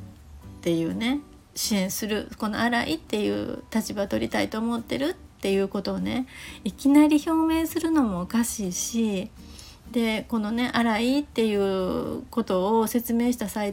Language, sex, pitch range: Japanese, female, 200-250 Hz